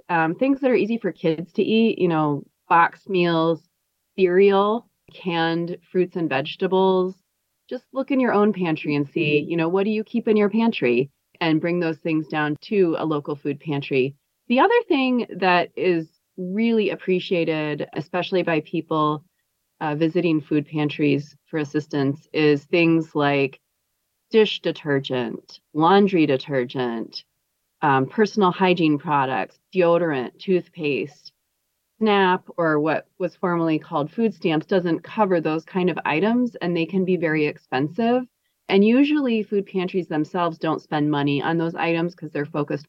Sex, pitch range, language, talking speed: female, 150-200 Hz, English, 150 wpm